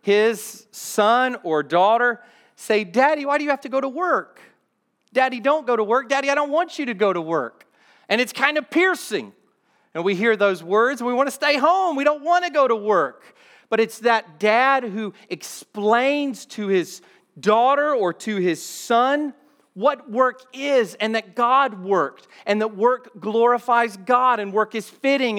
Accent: American